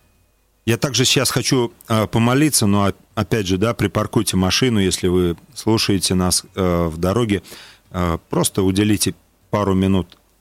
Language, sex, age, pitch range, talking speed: Russian, male, 40-59, 90-115 Hz, 120 wpm